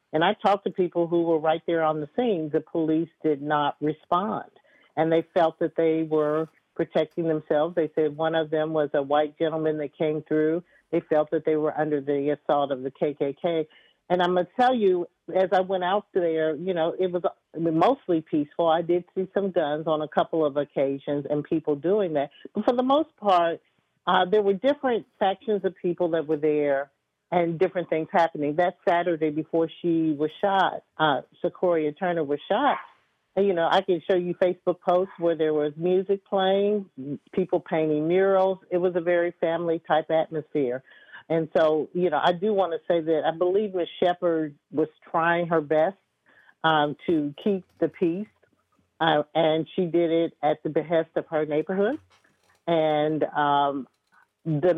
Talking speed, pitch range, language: 185 wpm, 155-180 Hz, English